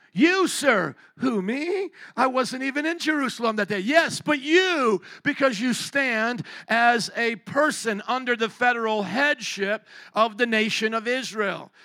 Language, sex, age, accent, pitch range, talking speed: English, male, 50-69, American, 185-230 Hz, 145 wpm